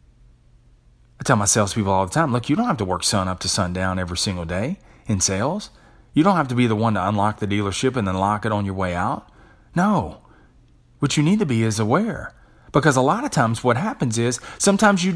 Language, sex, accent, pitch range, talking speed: English, male, American, 100-130 Hz, 230 wpm